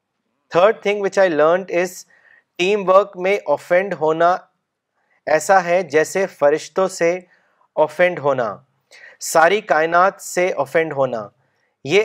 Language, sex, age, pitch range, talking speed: Urdu, male, 30-49, 155-185 Hz, 105 wpm